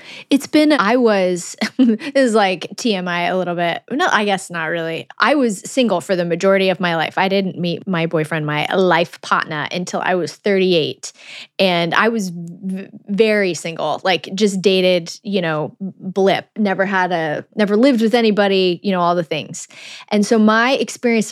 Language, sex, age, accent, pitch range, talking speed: English, female, 20-39, American, 180-220 Hz, 185 wpm